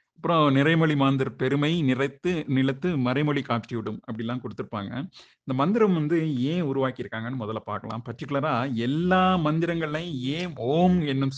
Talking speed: 125 wpm